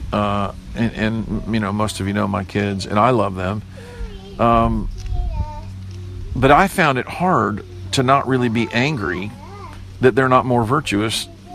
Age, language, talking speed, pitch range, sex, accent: 50-69, English, 160 wpm, 100-130 Hz, male, American